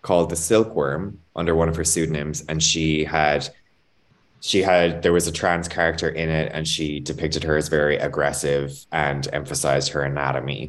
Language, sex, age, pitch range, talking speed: English, male, 20-39, 75-85 Hz, 175 wpm